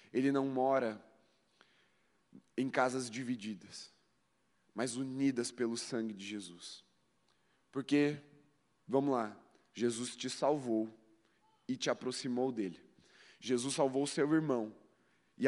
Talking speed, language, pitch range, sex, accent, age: 110 wpm, Portuguese, 120-145 Hz, male, Brazilian, 20-39